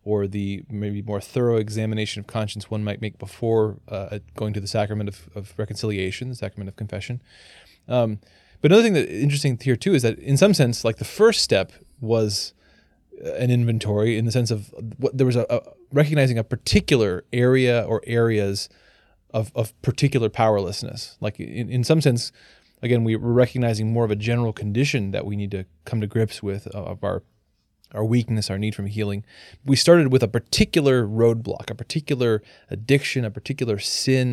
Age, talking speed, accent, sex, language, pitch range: 20-39, 185 wpm, American, male, English, 105-130 Hz